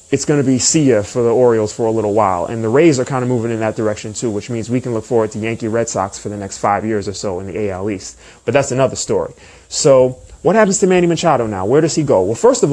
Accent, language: American, English